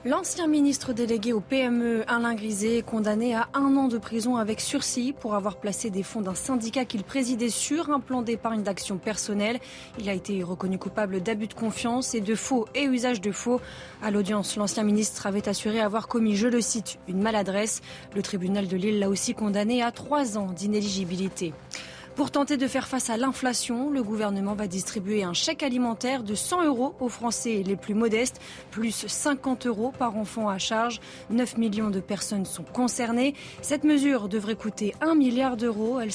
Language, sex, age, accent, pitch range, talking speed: French, female, 20-39, French, 210-255 Hz, 190 wpm